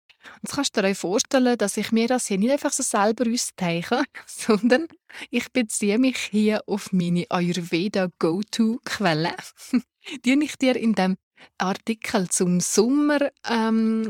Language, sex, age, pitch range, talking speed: German, female, 20-39, 185-245 Hz, 155 wpm